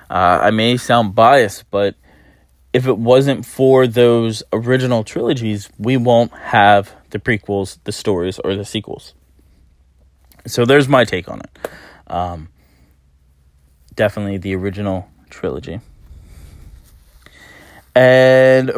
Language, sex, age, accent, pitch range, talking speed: English, male, 20-39, American, 90-125 Hz, 110 wpm